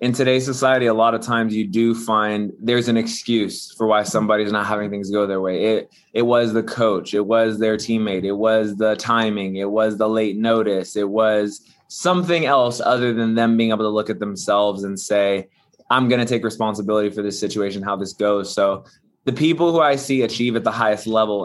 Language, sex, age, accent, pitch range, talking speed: English, male, 20-39, American, 105-125 Hz, 215 wpm